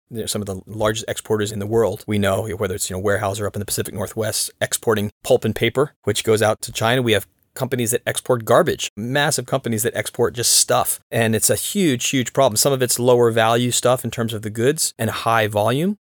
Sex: male